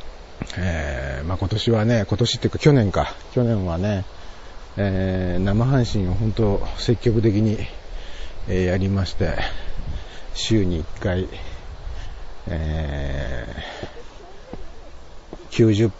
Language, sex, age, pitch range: Japanese, male, 50-69, 85-120 Hz